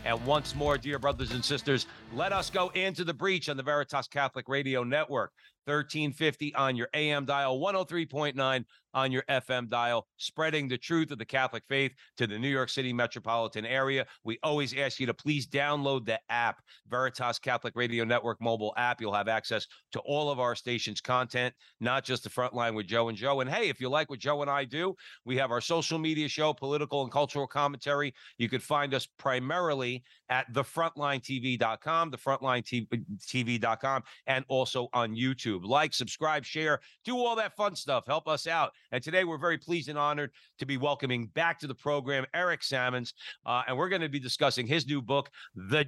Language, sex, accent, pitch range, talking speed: English, male, American, 125-150 Hz, 190 wpm